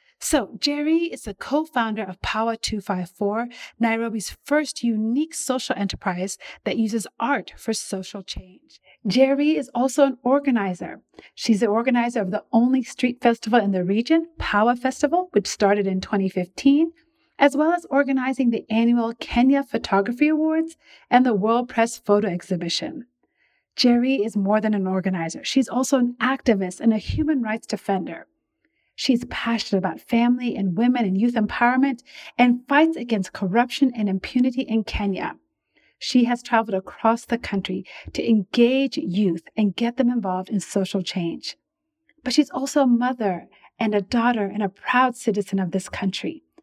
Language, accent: English, American